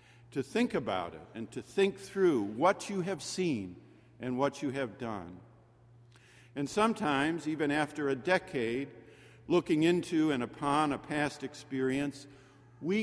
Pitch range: 115-170 Hz